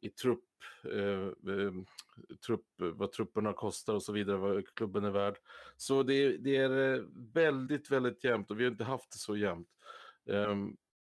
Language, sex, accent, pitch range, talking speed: Swedish, male, Norwegian, 100-120 Hz, 160 wpm